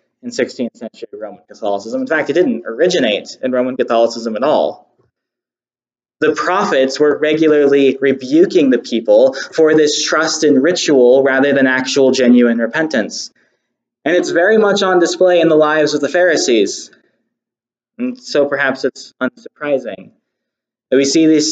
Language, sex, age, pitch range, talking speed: English, male, 20-39, 125-165 Hz, 150 wpm